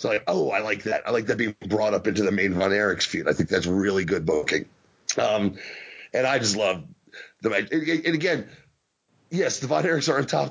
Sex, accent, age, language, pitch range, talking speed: male, American, 40-59, English, 130-175 Hz, 230 wpm